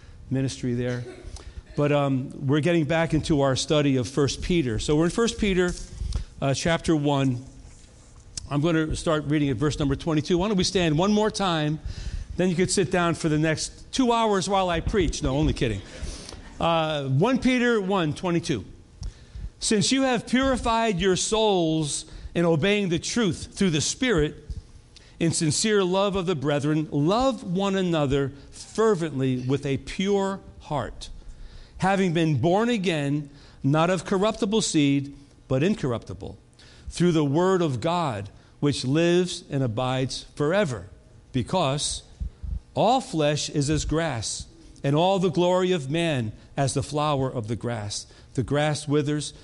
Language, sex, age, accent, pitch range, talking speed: English, male, 50-69, American, 130-180 Hz, 155 wpm